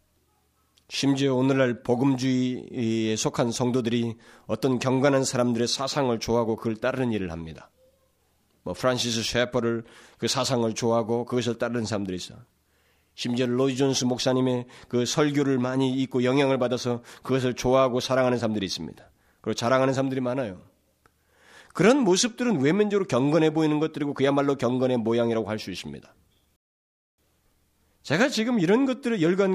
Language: Korean